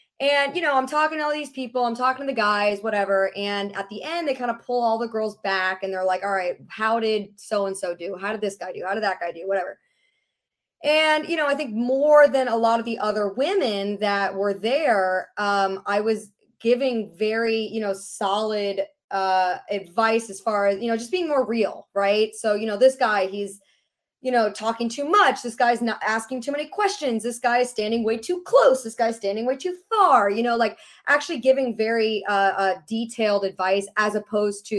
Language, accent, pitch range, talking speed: English, American, 200-255 Hz, 220 wpm